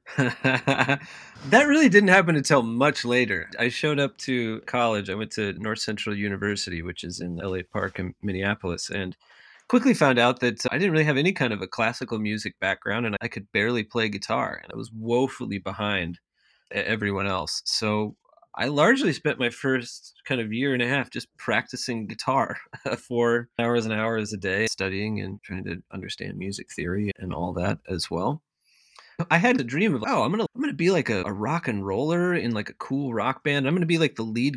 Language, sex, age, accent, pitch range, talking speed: English, male, 30-49, American, 105-145 Hz, 205 wpm